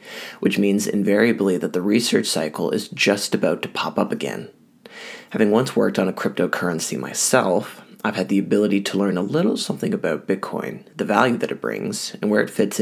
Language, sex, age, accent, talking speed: English, male, 20-39, American, 190 wpm